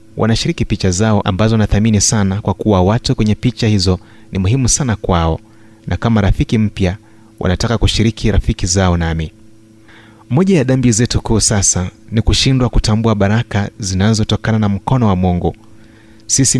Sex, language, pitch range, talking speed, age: male, Swahili, 100-115 Hz, 155 wpm, 30-49